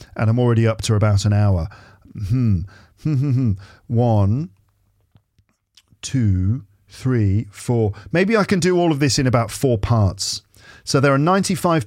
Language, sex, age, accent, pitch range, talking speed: English, male, 40-59, British, 105-150 Hz, 140 wpm